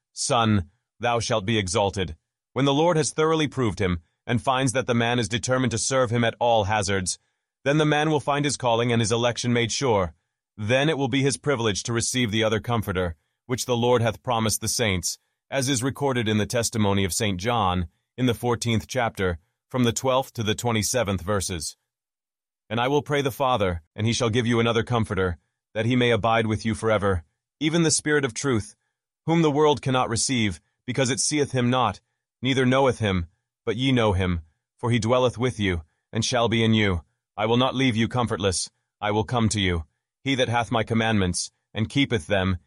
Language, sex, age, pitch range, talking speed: English, male, 30-49, 100-125 Hz, 205 wpm